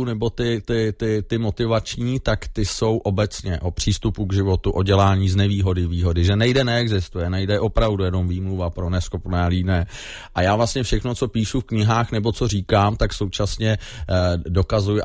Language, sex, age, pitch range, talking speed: Czech, male, 30-49, 95-115 Hz, 170 wpm